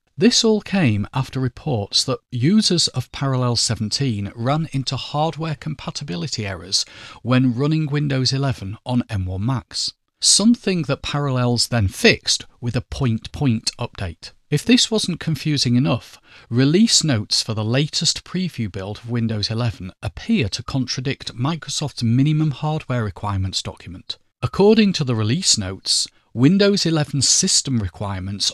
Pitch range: 105-145 Hz